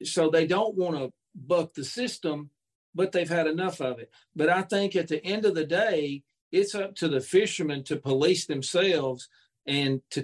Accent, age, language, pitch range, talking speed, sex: American, 50-69, English, 130-170 Hz, 195 wpm, male